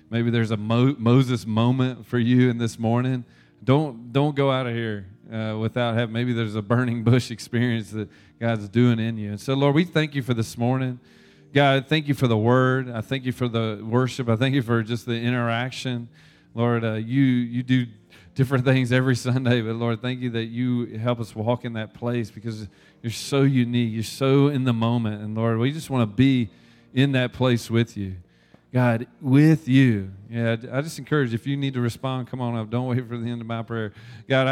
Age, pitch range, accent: 30-49, 115-135 Hz, American